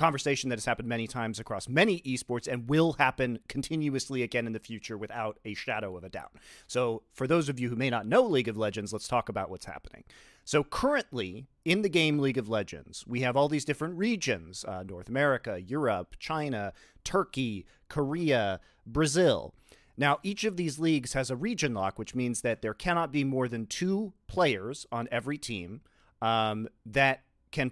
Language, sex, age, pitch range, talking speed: English, male, 30-49, 110-145 Hz, 190 wpm